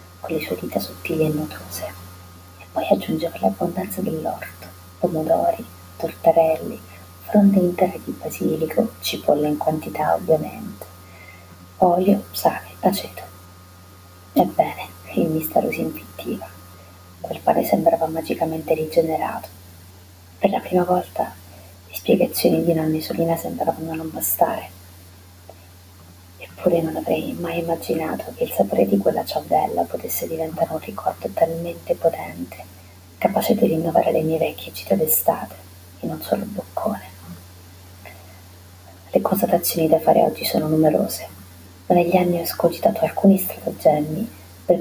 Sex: female